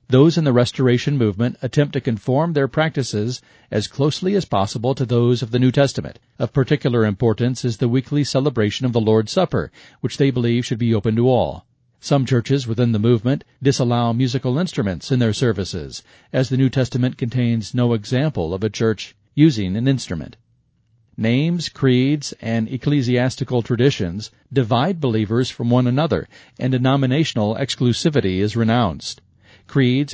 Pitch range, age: 115-135 Hz, 40-59